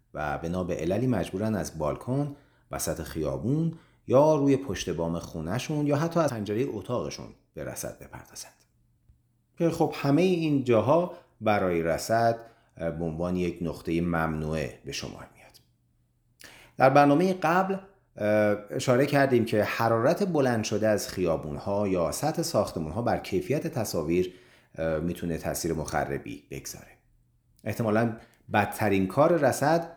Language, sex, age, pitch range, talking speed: Persian, male, 40-59, 85-135 Hz, 125 wpm